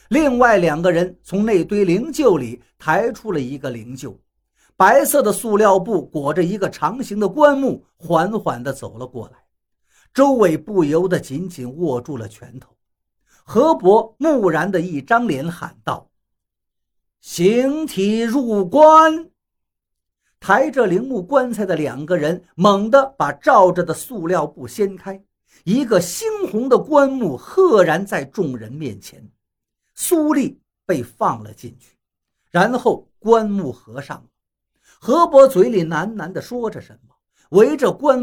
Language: Chinese